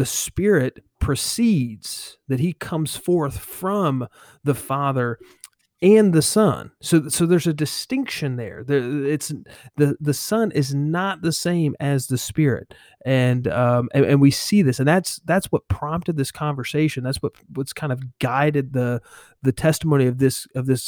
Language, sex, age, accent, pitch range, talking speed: English, male, 30-49, American, 125-155 Hz, 165 wpm